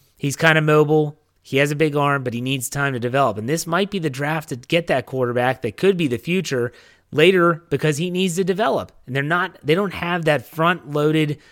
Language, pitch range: English, 115-160 Hz